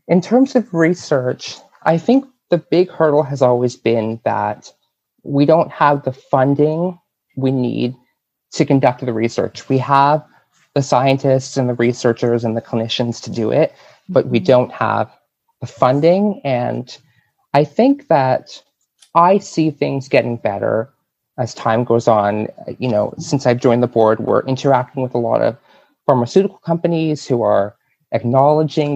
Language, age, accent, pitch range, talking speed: English, 30-49, American, 120-145 Hz, 155 wpm